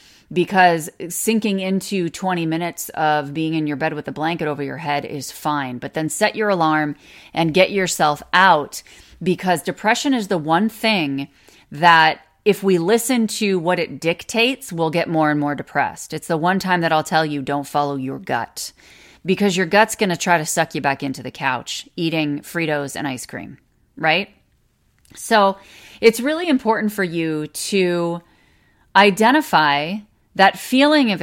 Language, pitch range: English, 145-190 Hz